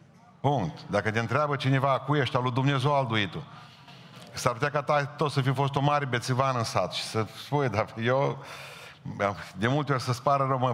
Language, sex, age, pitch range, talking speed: Romanian, male, 50-69, 110-140 Hz, 205 wpm